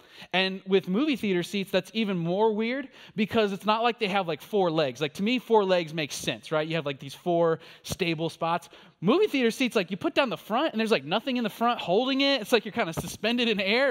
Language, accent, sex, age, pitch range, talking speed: English, American, male, 20-39, 165-225 Hz, 255 wpm